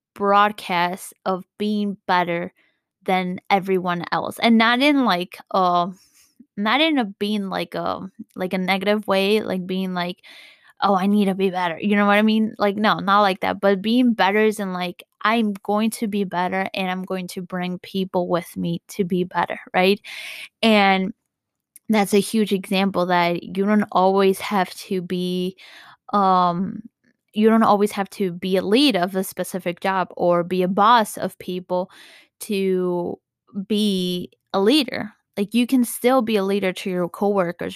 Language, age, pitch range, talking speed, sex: English, 10-29, 185-225 Hz, 175 wpm, female